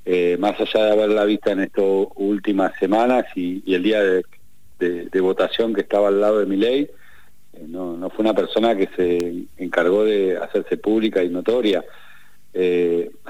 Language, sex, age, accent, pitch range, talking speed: Spanish, male, 40-59, Argentinian, 95-120 Hz, 180 wpm